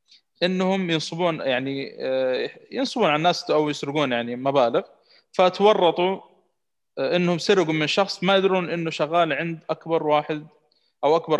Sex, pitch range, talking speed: male, 135-170 Hz, 125 wpm